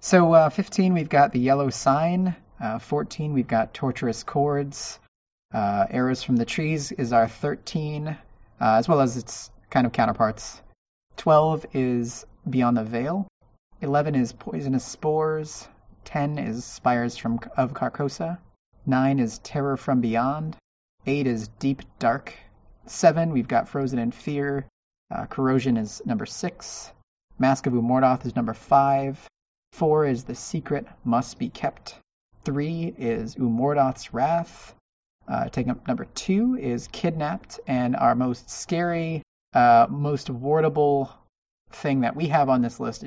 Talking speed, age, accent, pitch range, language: 145 wpm, 30-49, American, 120-150 Hz, English